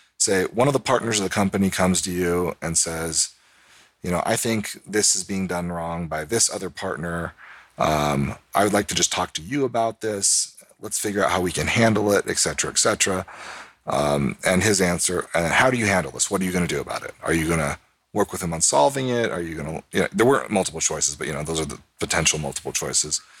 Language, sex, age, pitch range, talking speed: English, male, 40-59, 80-105 Hz, 245 wpm